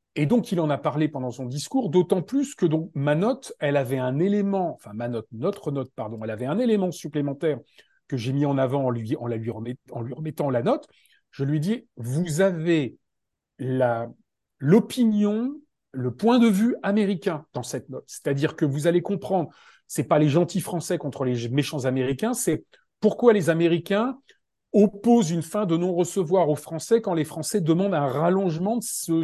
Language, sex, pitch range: French, male, 145-205 Hz